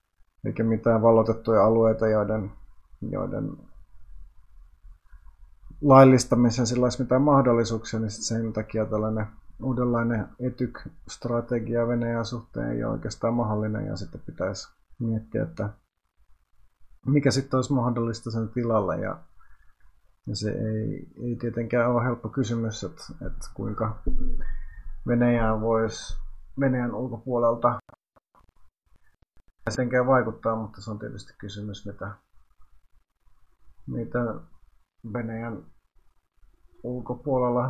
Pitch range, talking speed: 105-125 Hz, 95 wpm